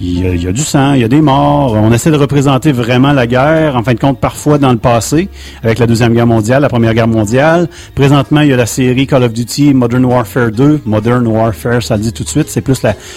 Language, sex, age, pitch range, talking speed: French, male, 30-49, 115-150 Hz, 275 wpm